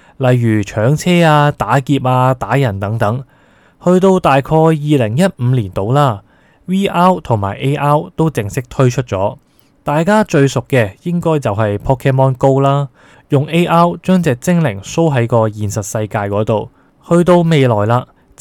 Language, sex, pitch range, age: Chinese, male, 115-150 Hz, 20-39